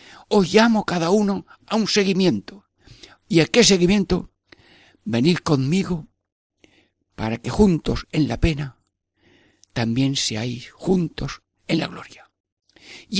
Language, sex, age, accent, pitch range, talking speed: Spanish, male, 60-79, Spanish, 100-145 Hz, 120 wpm